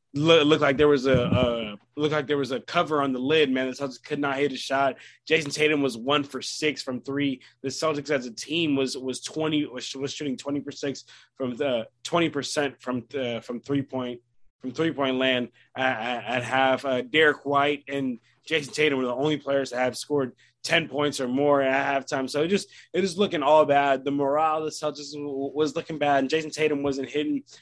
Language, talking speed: English, 215 wpm